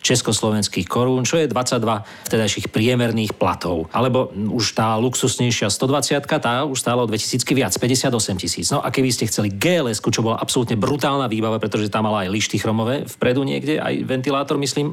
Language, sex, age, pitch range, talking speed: Slovak, male, 40-59, 105-130 Hz, 170 wpm